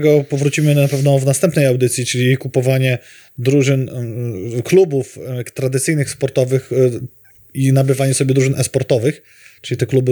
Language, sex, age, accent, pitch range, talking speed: Polish, male, 20-39, native, 125-145 Hz, 120 wpm